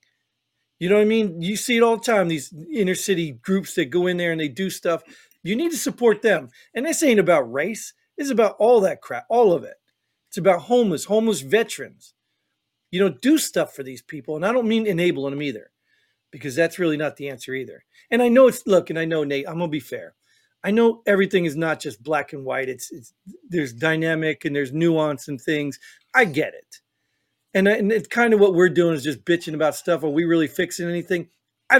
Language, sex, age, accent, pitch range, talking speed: English, male, 40-59, American, 155-210 Hz, 230 wpm